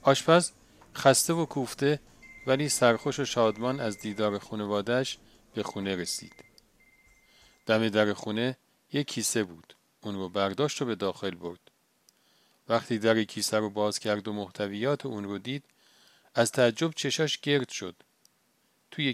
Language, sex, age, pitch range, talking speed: Persian, male, 40-59, 105-135 Hz, 140 wpm